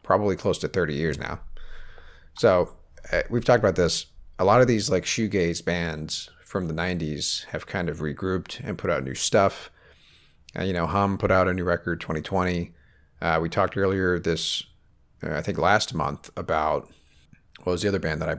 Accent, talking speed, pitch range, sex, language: American, 195 wpm, 80-100 Hz, male, English